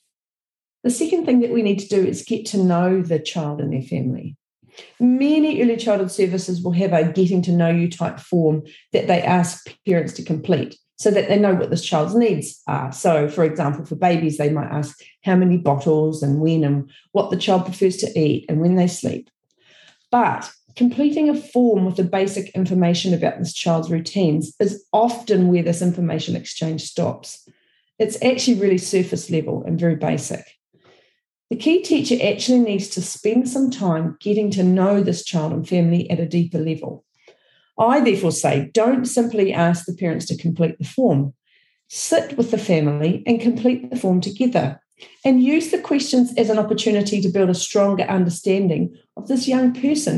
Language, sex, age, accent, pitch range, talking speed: English, female, 40-59, Australian, 165-235 Hz, 180 wpm